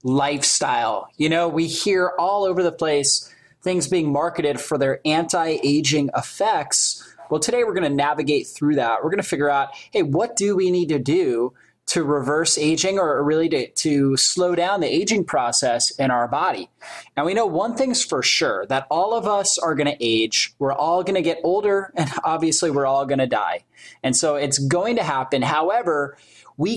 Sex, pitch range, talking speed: male, 140-180 Hz, 190 wpm